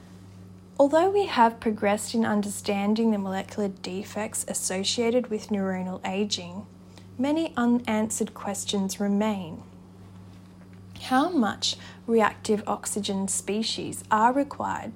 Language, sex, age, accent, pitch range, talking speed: English, female, 10-29, Australian, 190-230 Hz, 95 wpm